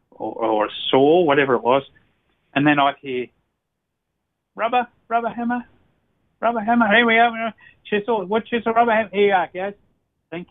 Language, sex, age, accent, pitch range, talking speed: English, male, 40-59, Australian, 120-180 Hz, 175 wpm